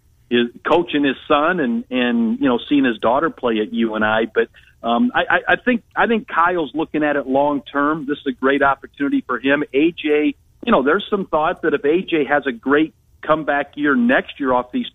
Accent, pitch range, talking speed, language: American, 120-150 Hz, 215 wpm, English